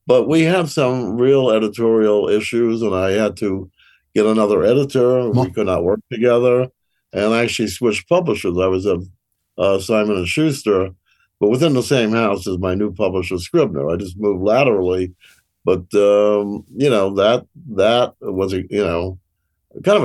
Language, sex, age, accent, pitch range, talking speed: English, male, 60-79, American, 95-125 Hz, 170 wpm